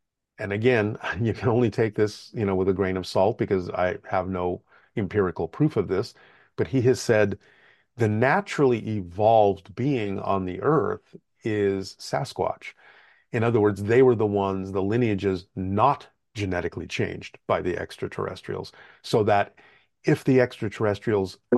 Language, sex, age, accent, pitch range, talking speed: English, male, 40-59, American, 95-115 Hz, 155 wpm